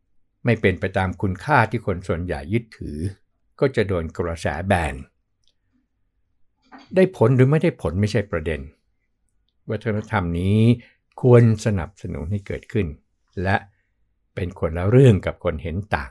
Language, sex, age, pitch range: Thai, male, 60-79, 90-115 Hz